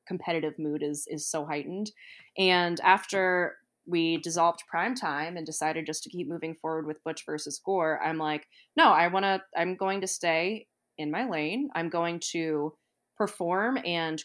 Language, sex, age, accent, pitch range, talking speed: English, female, 20-39, American, 160-190 Hz, 175 wpm